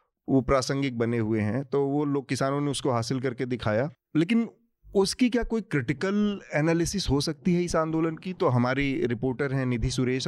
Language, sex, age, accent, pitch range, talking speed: Hindi, male, 30-49, native, 120-155 Hz, 185 wpm